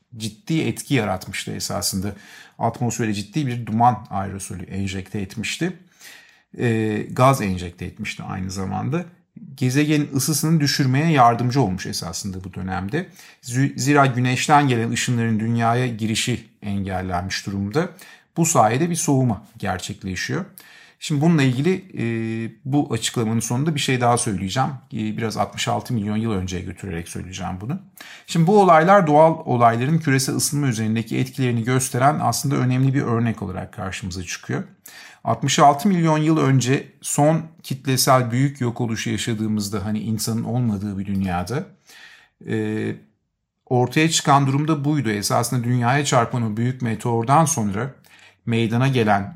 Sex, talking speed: male, 130 wpm